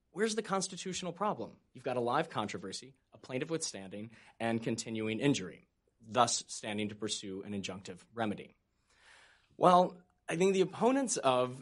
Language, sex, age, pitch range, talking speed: English, male, 20-39, 110-135 Hz, 150 wpm